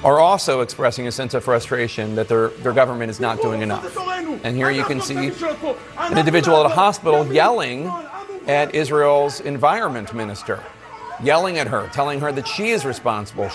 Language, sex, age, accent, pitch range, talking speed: English, male, 40-59, American, 115-155 Hz, 175 wpm